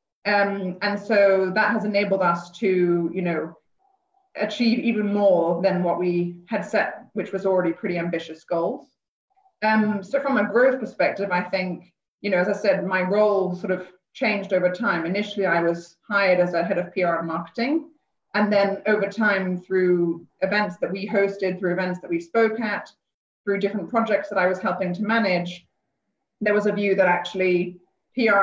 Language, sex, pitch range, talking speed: English, female, 175-210 Hz, 180 wpm